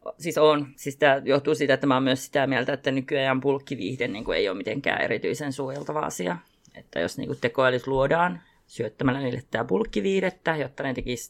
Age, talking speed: 30-49, 165 wpm